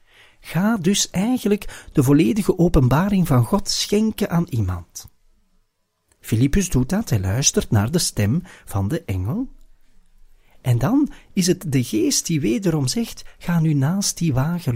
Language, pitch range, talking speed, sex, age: Dutch, 120-195 Hz, 145 wpm, male, 40-59